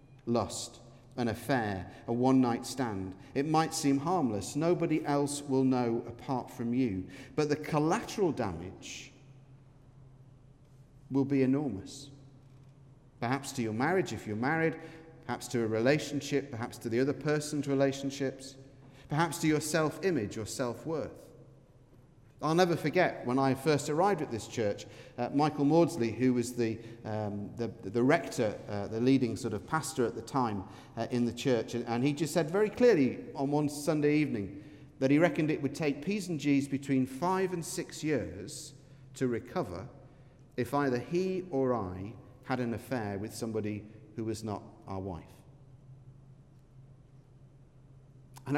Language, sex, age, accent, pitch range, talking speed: English, male, 40-59, British, 120-145 Hz, 150 wpm